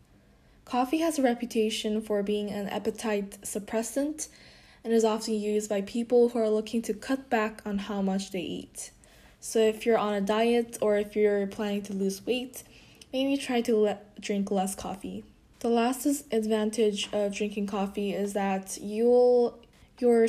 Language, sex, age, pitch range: Korean, female, 10-29, 205-235 Hz